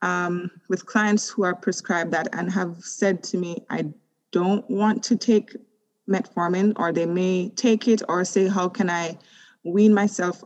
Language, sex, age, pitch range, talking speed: English, female, 20-39, 175-210 Hz, 165 wpm